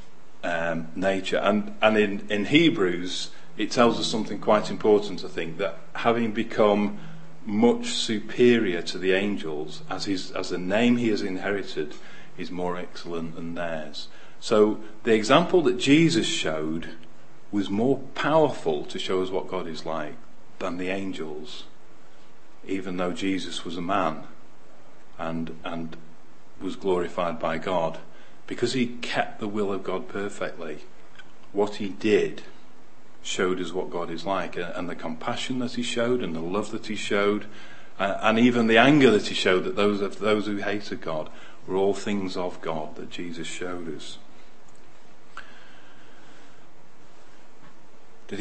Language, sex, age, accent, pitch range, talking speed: English, male, 40-59, British, 90-115 Hz, 145 wpm